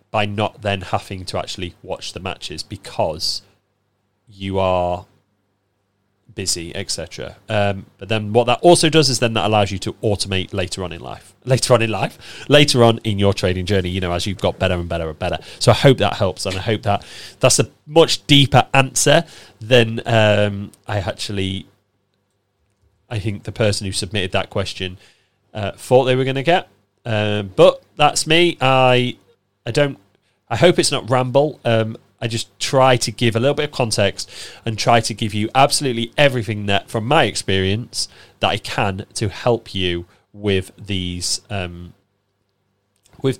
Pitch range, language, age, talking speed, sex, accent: 100-125 Hz, English, 30-49, 180 wpm, male, British